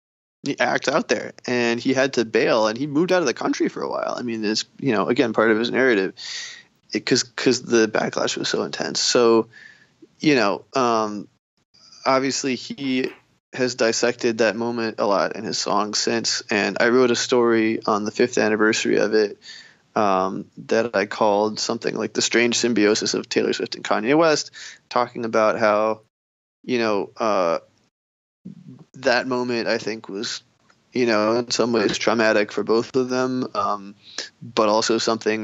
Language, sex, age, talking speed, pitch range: English, male, 20-39, 175 wpm, 110-120 Hz